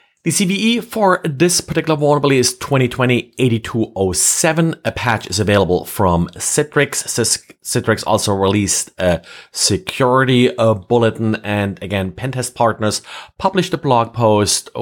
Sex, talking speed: male, 115 wpm